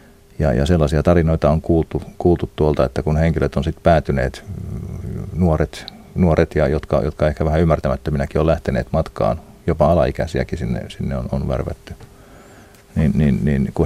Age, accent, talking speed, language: 40-59, native, 155 wpm, Finnish